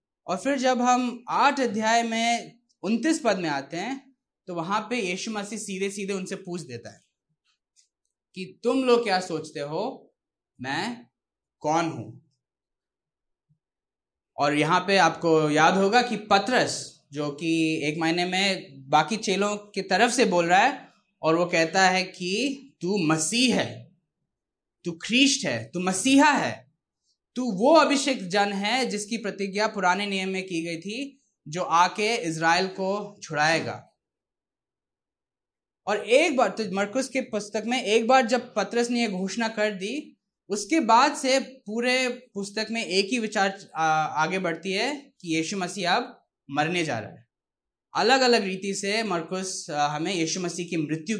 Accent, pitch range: native, 170-235 Hz